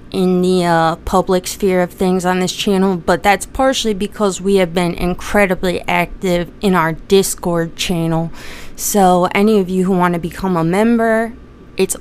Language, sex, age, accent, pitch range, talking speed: English, female, 20-39, American, 170-200 Hz, 170 wpm